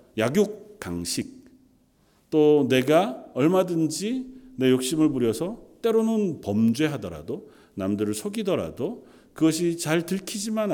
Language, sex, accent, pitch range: Korean, male, native, 120-190 Hz